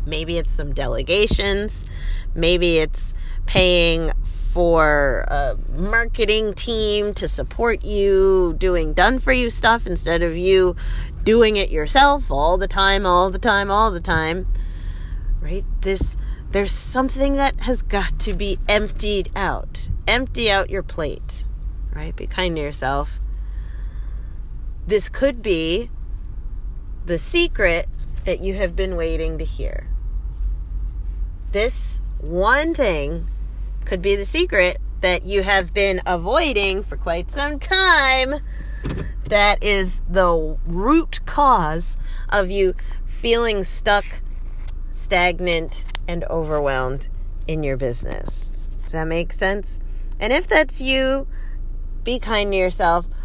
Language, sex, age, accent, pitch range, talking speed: English, female, 30-49, American, 140-210 Hz, 120 wpm